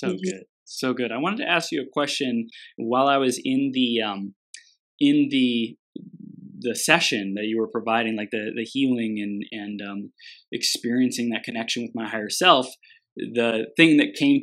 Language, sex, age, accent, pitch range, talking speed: English, male, 20-39, American, 115-150 Hz, 180 wpm